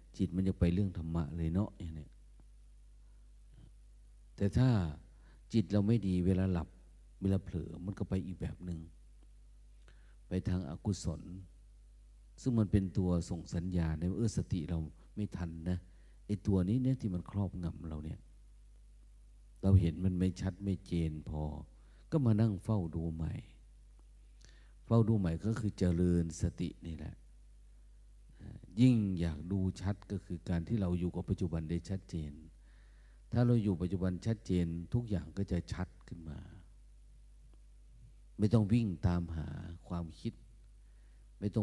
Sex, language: male, Thai